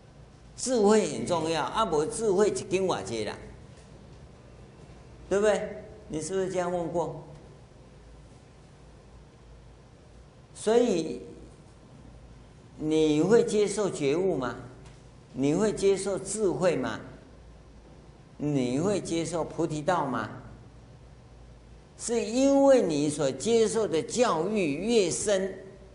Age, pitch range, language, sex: 50-69, 125-185 Hz, Chinese, male